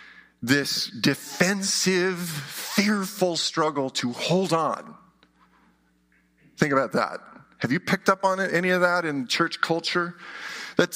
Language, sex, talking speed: English, male, 120 wpm